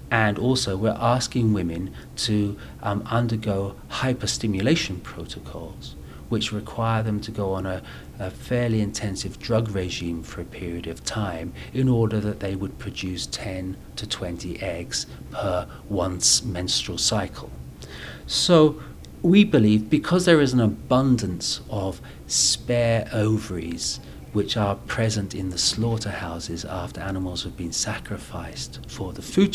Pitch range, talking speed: 90-115 Hz, 135 wpm